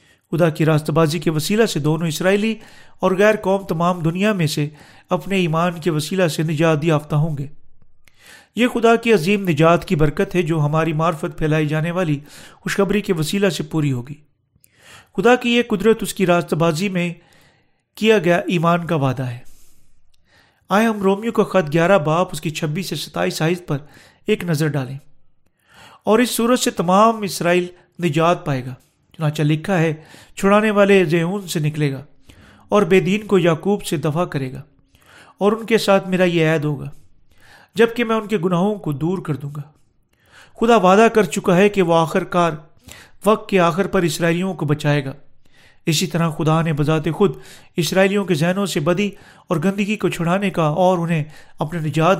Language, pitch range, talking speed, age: Urdu, 155-195 Hz, 185 wpm, 40-59